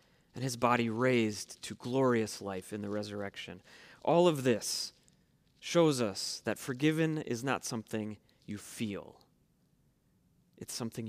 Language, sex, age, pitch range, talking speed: English, male, 30-49, 120-160 Hz, 130 wpm